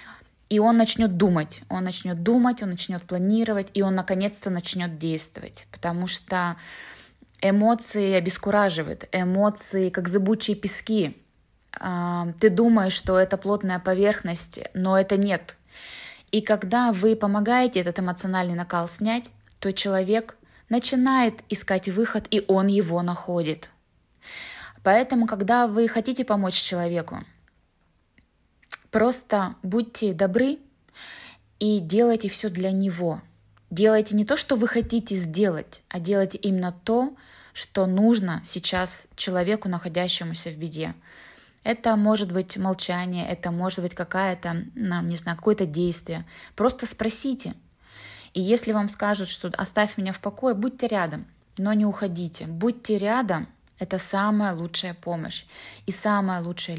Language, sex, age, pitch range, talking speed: Russian, female, 20-39, 180-215 Hz, 120 wpm